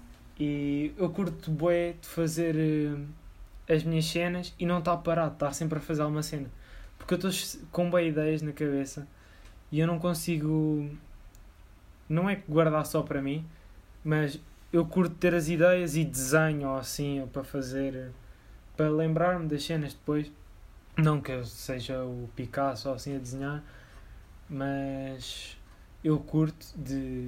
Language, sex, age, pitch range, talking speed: Portuguese, male, 20-39, 125-155 Hz, 155 wpm